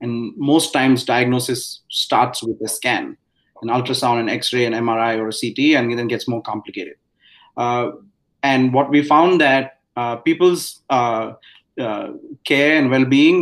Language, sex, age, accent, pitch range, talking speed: English, male, 30-49, Indian, 120-145 Hz, 155 wpm